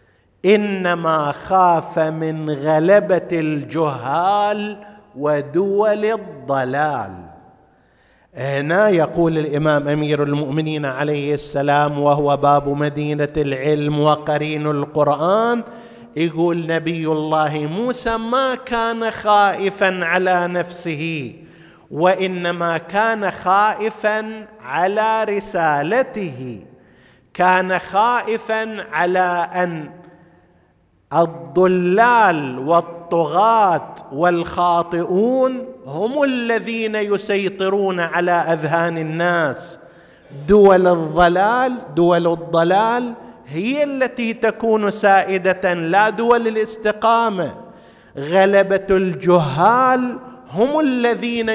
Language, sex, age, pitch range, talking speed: Arabic, male, 50-69, 155-210 Hz, 70 wpm